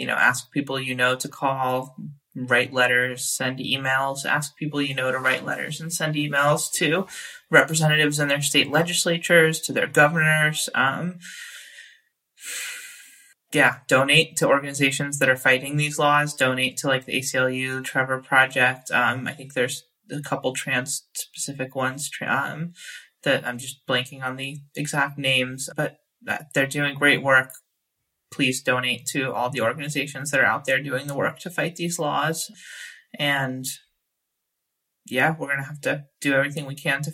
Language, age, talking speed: English, 20-39, 160 wpm